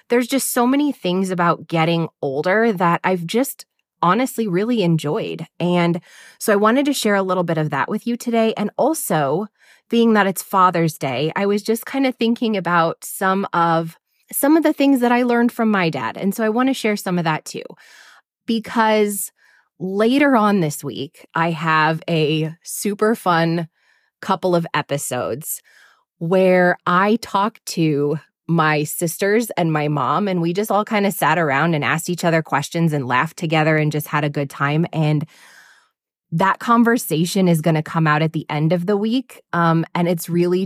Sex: female